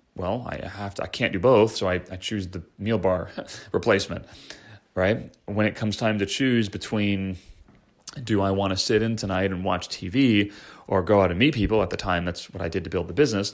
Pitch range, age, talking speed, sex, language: 95-110 Hz, 30-49, 225 wpm, male, English